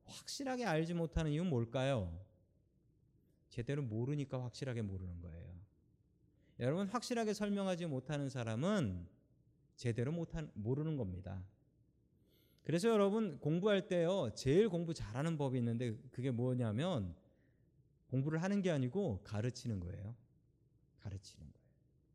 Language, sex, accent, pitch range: Korean, male, native, 120-180 Hz